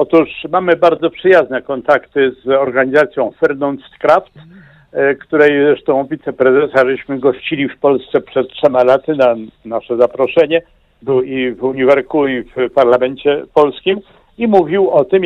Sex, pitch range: male, 140-225 Hz